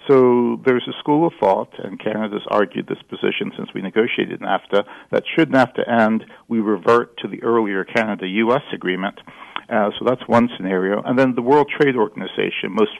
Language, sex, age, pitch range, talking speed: English, male, 50-69, 105-130 Hz, 175 wpm